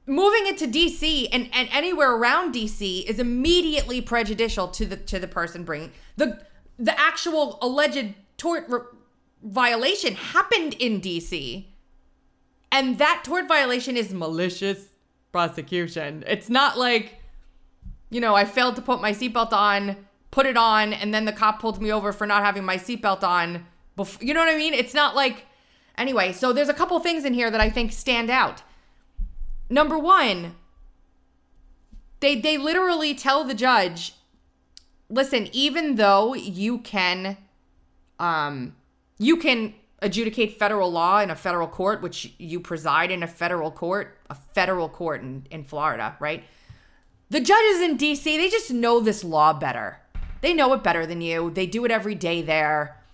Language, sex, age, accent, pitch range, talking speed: English, female, 30-49, American, 170-270 Hz, 165 wpm